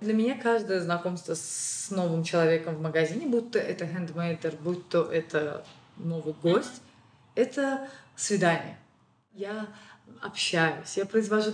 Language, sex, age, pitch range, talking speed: Russian, female, 20-39, 170-230 Hz, 125 wpm